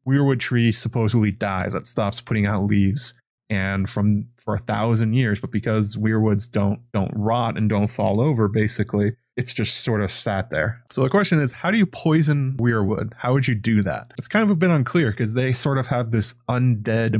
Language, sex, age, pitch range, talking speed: English, male, 20-39, 105-125 Hz, 205 wpm